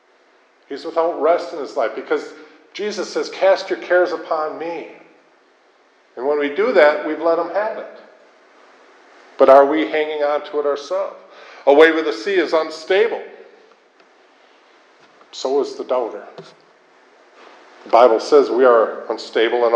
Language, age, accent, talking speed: English, 50-69, American, 150 wpm